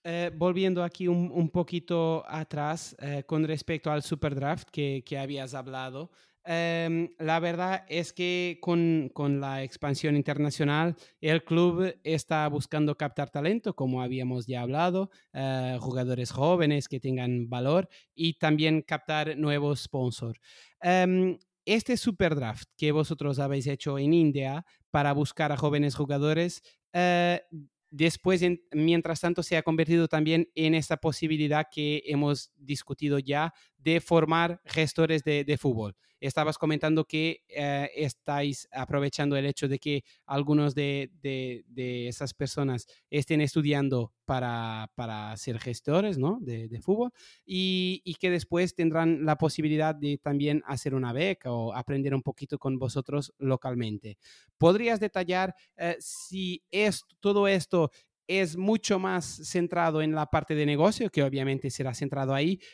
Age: 30-49